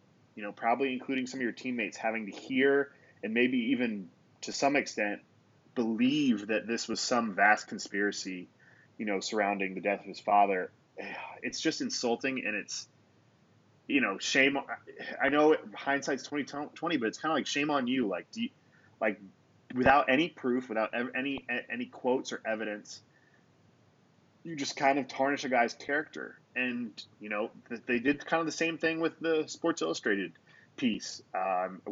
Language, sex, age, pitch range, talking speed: English, male, 20-39, 105-140 Hz, 165 wpm